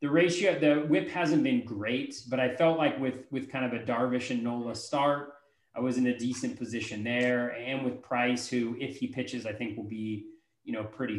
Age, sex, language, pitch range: 30-49, male, English, 120-160 Hz